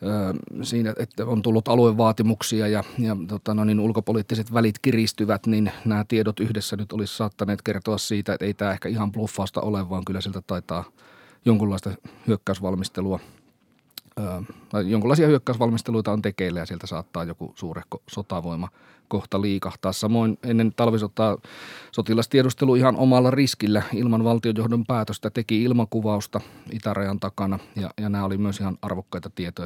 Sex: male